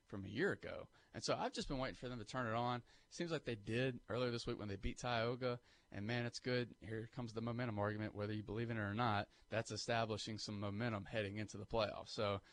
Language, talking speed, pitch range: English, 250 wpm, 105-120 Hz